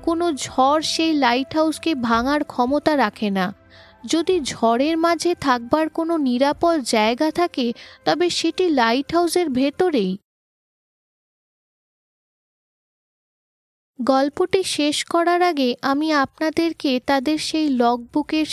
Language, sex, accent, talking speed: Bengali, female, native, 95 wpm